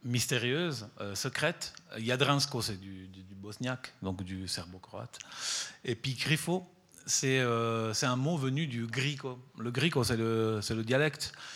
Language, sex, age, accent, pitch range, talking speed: French, male, 40-59, French, 100-130 Hz, 155 wpm